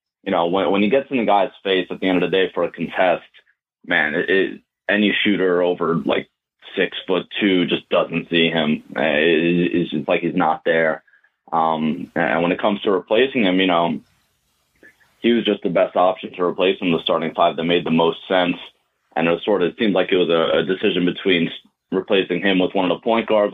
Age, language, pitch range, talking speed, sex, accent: 20-39, English, 85-105 Hz, 230 wpm, male, American